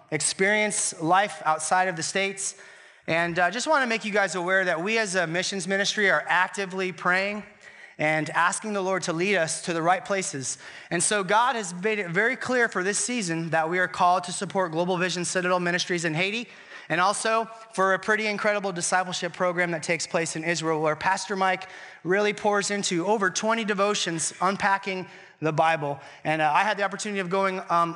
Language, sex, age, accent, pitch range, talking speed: English, male, 30-49, American, 170-210 Hz, 195 wpm